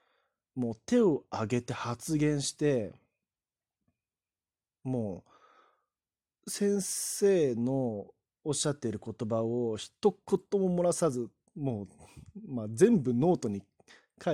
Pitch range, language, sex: 110-160 Hz, Japanese, male